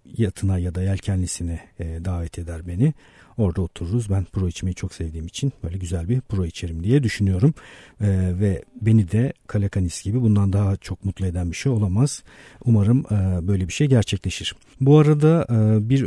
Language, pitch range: Turkish, 95-115 Hz